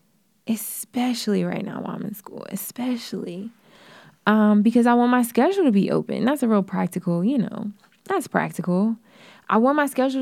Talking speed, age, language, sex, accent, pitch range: 170 wpm, 20-39, English, female, American, 190-225 Hz